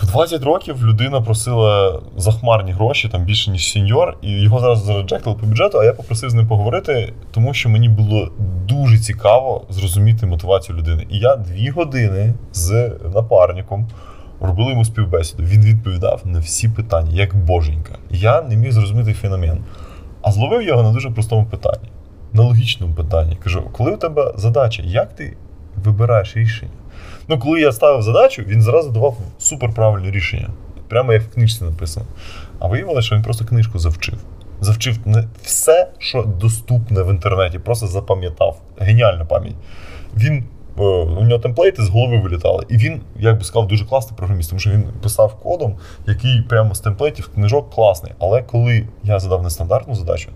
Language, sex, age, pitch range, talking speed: English, male, 20-39, 95-115 Hz, 165 wpm